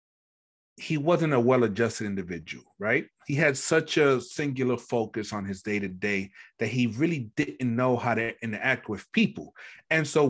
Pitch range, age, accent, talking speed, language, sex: 120-150 Hz, 30-49, American, 155 wpm, English, male